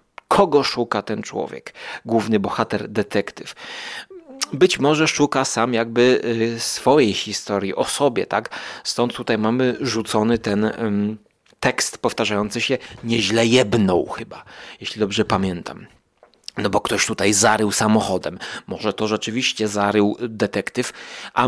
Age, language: 30-49, Polish